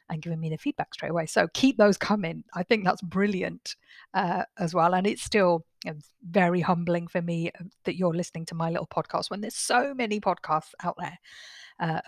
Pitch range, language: 170-205 Hz, English